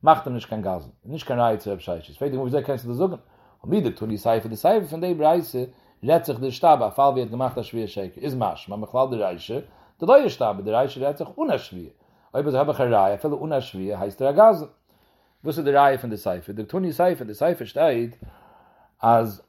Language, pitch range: English, 110-140 Hz